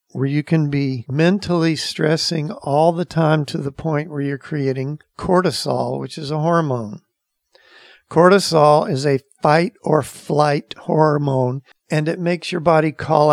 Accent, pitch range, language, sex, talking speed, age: American, 140-165 Hz, English, male, 140 wpm, 50-69